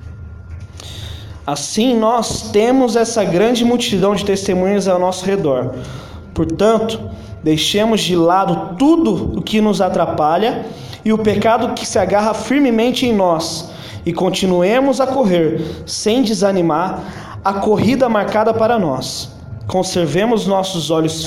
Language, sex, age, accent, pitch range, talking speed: Portuguese, male, 20-39, Brazilian, 150-200 Hz, 120 wpm